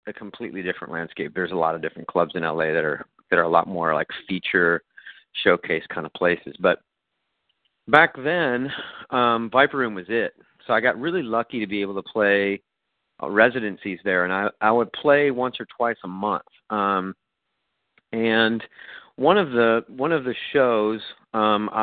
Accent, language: American, English